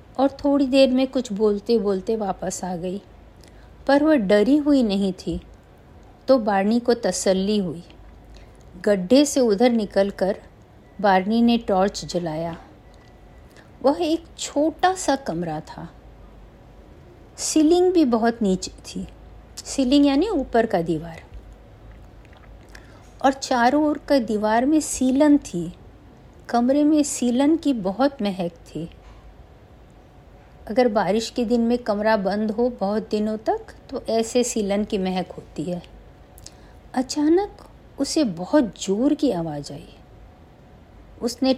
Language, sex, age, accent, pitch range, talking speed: Hindi, female, 50-69, native, 185-270 Hz, 125 wpm